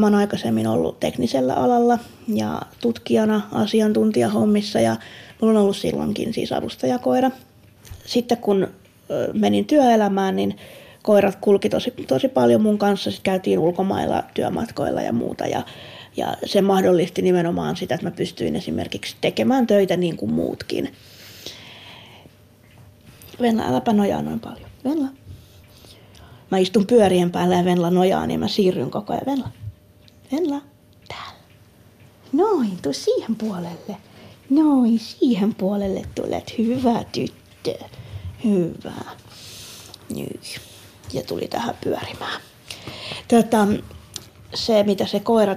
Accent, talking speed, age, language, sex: native, 115 wpm, 30-49, Finnish, female